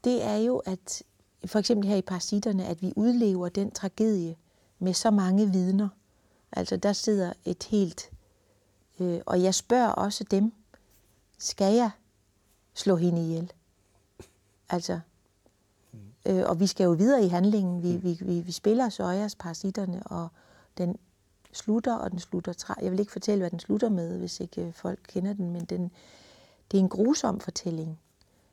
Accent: native